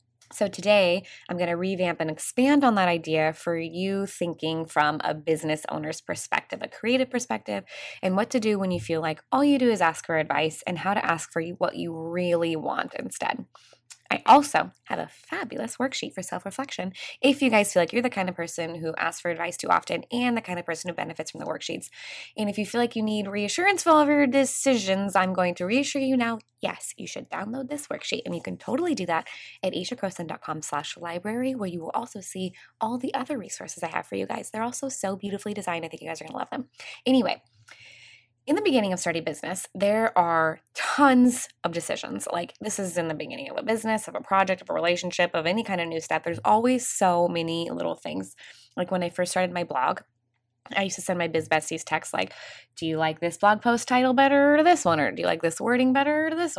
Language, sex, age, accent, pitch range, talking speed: English, female, 20-39, American, 165-240 Hz, 230 wpm